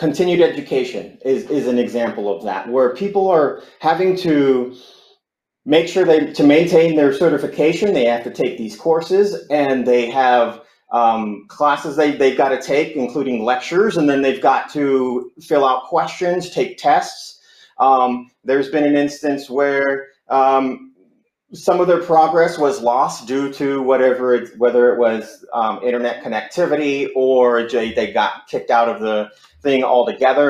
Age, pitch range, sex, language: 30-49, 120-155 Hz, male, English